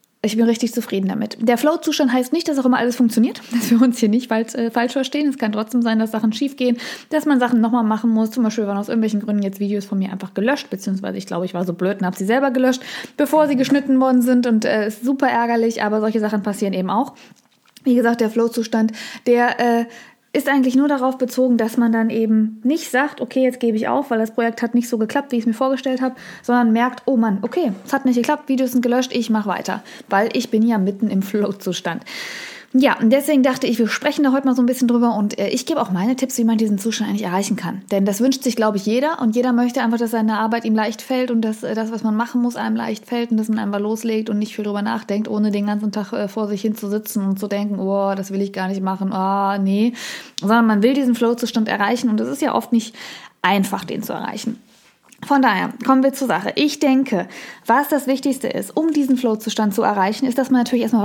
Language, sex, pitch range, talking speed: German, female, 215-255 Hz, 255 wpm